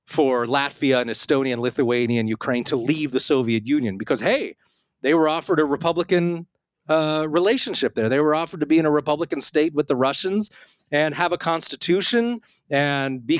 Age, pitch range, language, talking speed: 30-49, 120-155 Hz, English, 185 wpm